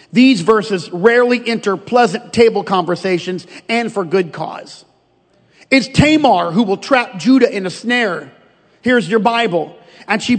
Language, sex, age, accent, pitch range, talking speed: English, male, 40-59, American, 200-255 Hz, 145 wpm